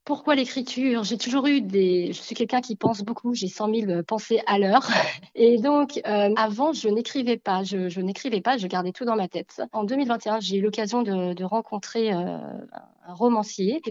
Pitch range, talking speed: 190-235 Hz, 205 wpm